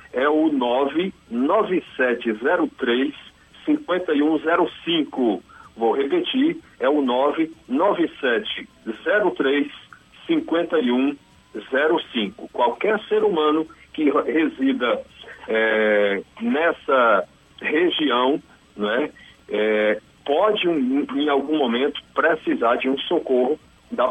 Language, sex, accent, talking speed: Portuguese, male, Brazilian, 65 wpm